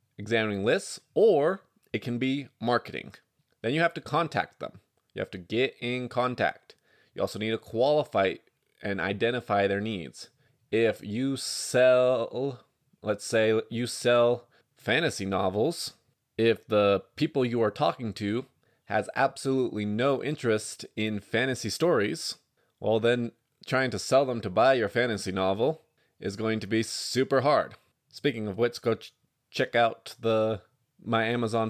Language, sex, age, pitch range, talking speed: English, male, 20-39, 100-125 Hz, 145 wpm